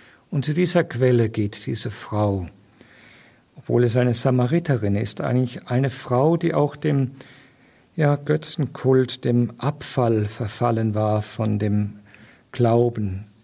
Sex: male